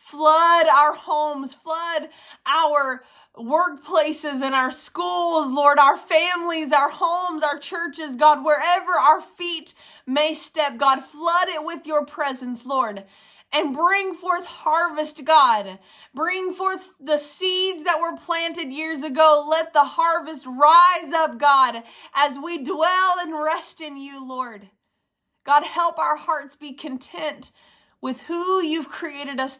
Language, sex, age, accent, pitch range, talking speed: English, female, 20-39, American, 225-305 Hz, 140 wpm